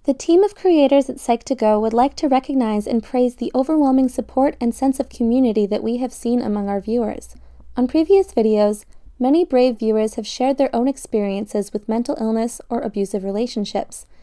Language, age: English, 20-39